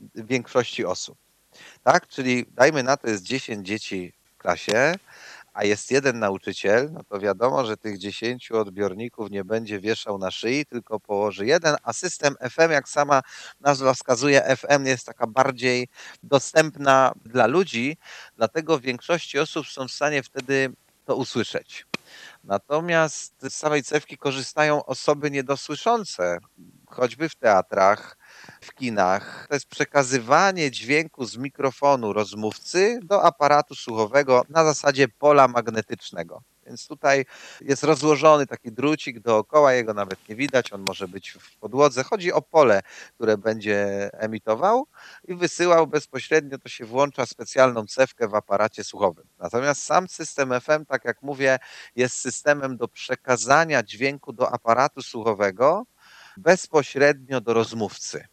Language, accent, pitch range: Polish, native, 115-145 Hz